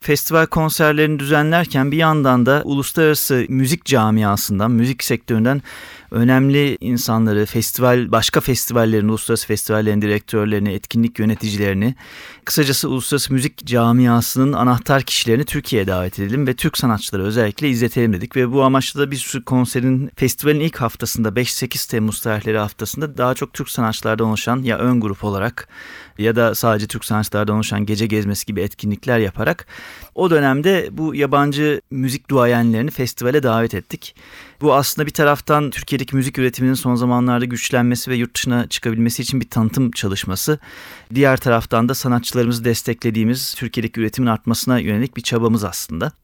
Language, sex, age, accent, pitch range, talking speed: Turkish, male, 30-49, native, 110-135 Hz, 140 wpm